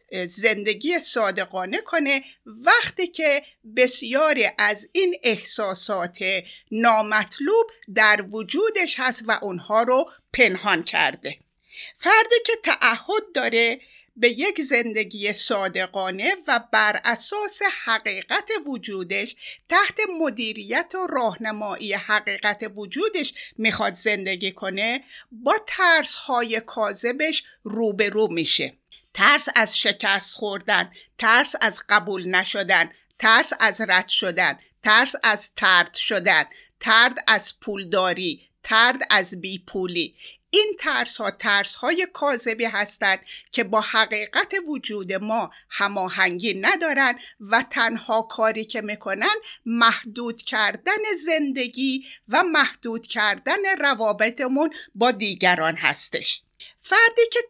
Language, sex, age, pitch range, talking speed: Persian, female, 50-69, 210-310 Hz, 105 wpm